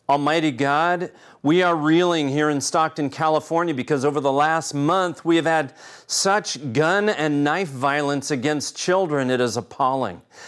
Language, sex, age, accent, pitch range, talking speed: English, male, 40-59, American, 140-180 Hz, 155 wpm